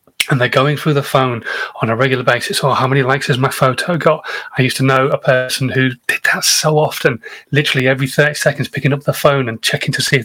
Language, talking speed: English, 245 wpm